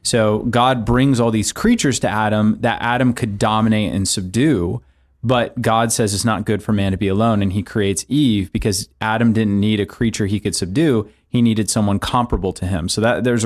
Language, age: English, 30-49